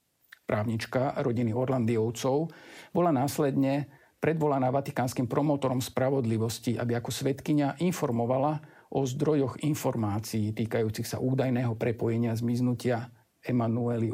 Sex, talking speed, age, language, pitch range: male, 95 wpm, 50-69, Slovak, 120-145 Hz